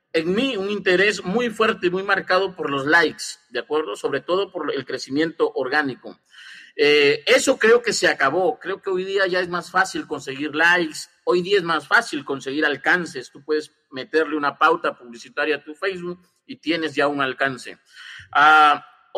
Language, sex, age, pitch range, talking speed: Spanish, male, 50-69, 155-230 Hz, 180 wpm